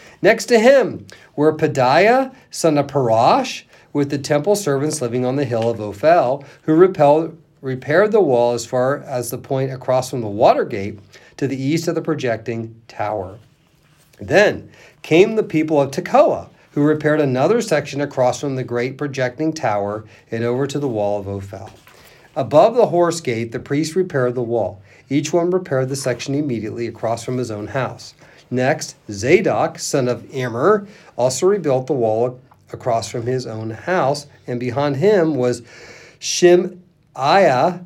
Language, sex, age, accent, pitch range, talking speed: English, male, 40-59, American, 120-155 Hz, 160 wpm